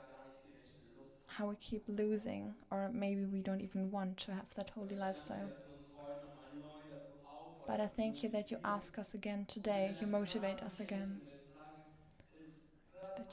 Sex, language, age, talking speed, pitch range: female, English, 20-39, 135 wpm, 170-210 Hz